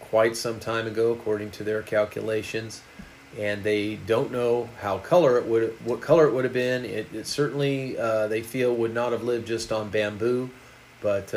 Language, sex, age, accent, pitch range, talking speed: English, male, 40-59, American, 105-125 Hz, 190 wpm